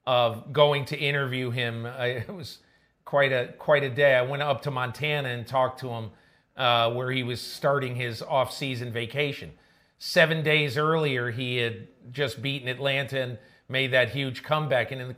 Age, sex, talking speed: 40-59, male, 180 wpm